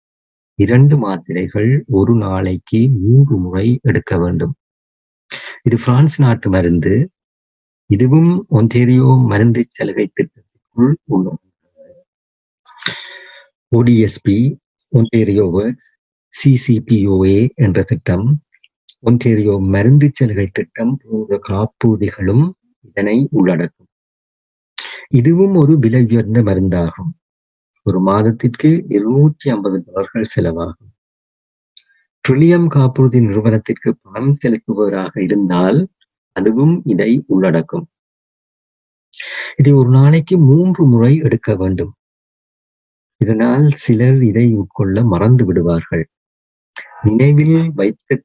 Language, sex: Tamil, male